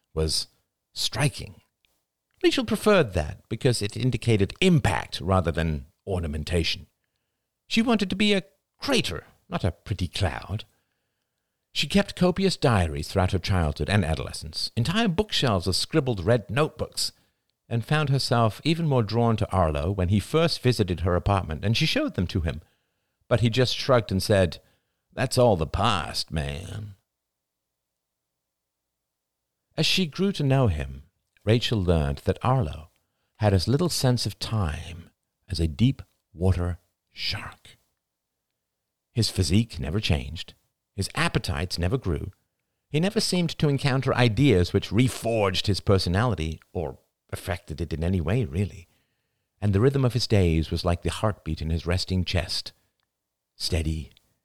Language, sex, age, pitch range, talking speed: English, male, 50-69, 80-120 Hz, 140 wpm